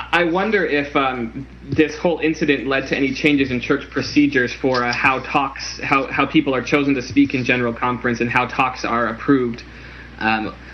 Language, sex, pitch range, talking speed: English, male, 125-150 Hz, 190 wpm